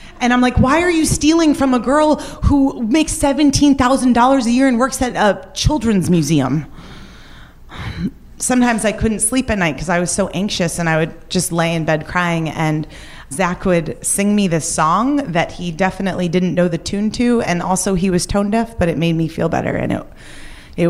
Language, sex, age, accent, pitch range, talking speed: English, female, 30-49, American, 160-215 Hz, 200 wpm